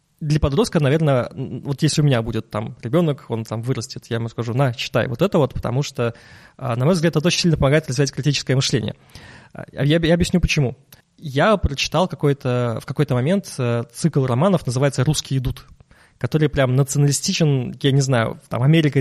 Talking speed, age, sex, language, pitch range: 175 wpm, 20-39, male, Russian, 120-150 Hz